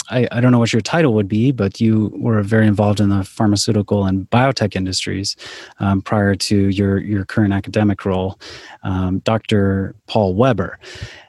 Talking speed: 170 wpm